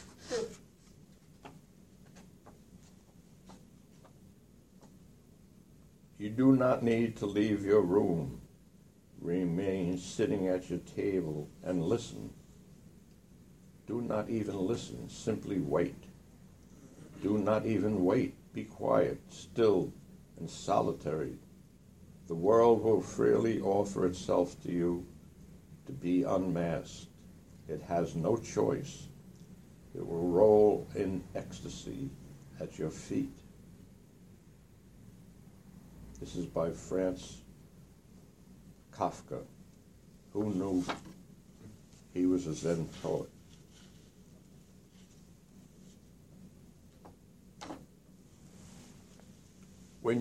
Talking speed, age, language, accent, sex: 80 wpm, 60-79, English, American, male